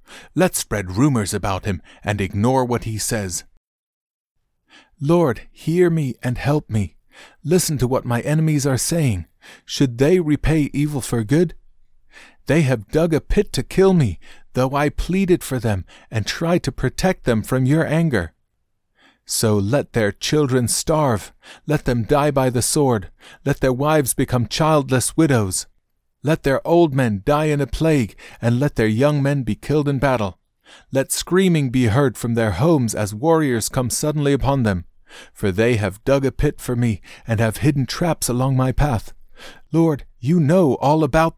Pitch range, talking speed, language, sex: 115-150 Hz, 170 wpm, English, male